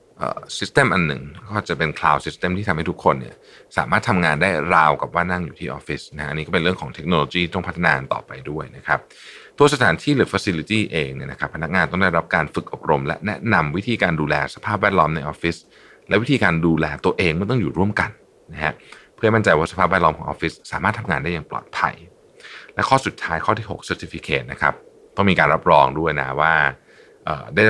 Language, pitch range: Thai, 75-105 Hz